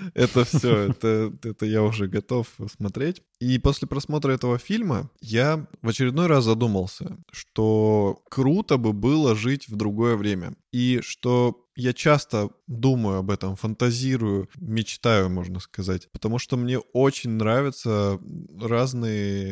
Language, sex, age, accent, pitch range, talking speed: Russian, male, 20-39, native, 105-130 Hz, 130 wpm